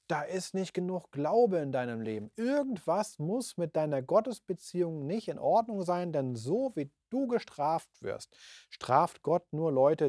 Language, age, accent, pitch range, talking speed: German, 40-59, German, 130-170 Hz, 160 wpm